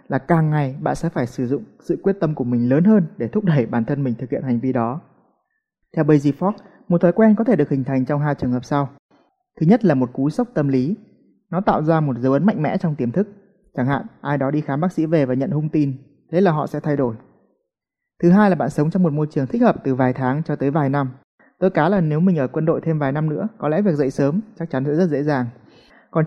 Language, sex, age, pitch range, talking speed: Vietnamese, male, 20-39, 135-185 Hz, 280 wpm